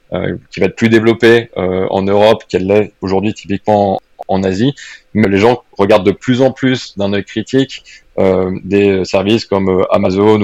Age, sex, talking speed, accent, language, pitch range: 20-39, male, 190 wpm, French, French, 95-110 Hz